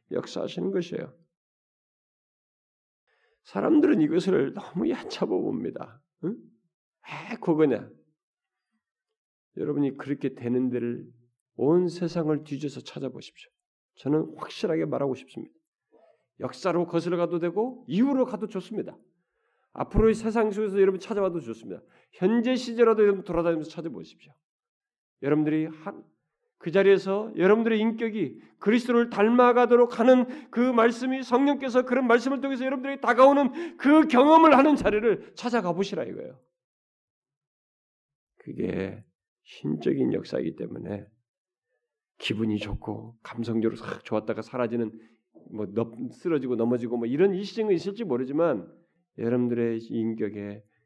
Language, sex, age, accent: Korean, male, 40-59, native